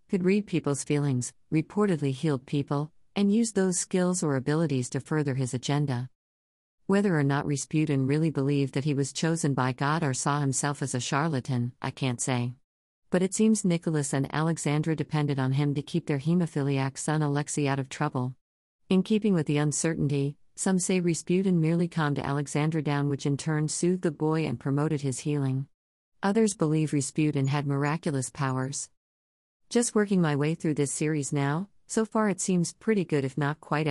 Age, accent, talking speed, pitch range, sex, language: 50-69, American, 180 wpm, 135-165 Hz, female, English